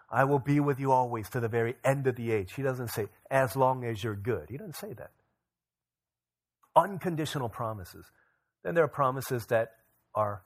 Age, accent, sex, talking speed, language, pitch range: 40-59, American, male, 190 wpm, English, 90-125 Hz